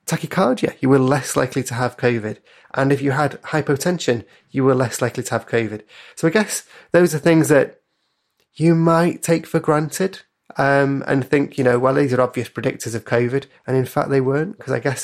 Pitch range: 125-155 Hz